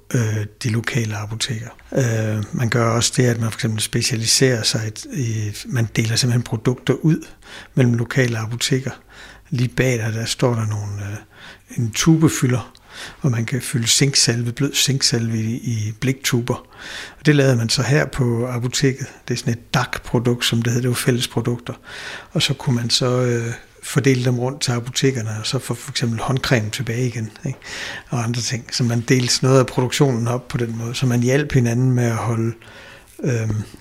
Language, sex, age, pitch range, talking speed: Danish, male, 60-79, 115-130 Hz, 175 wpm